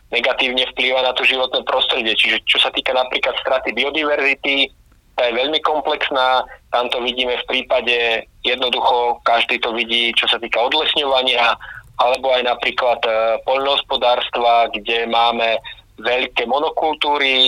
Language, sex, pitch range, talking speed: Slovak, male, 120-135 Hz, 135 wpm